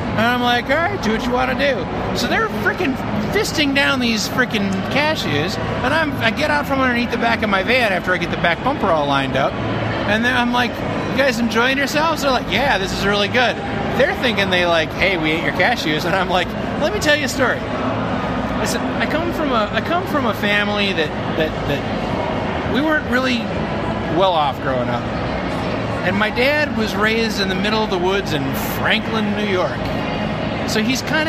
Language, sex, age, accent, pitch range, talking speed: English, male, 30-49, American, 175-250 Hz, 210 wpm